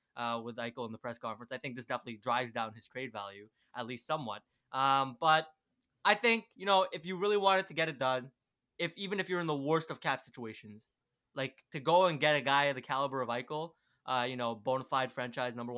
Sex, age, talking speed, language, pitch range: male, 20-39, 235 wpm, English, 125-175 Hz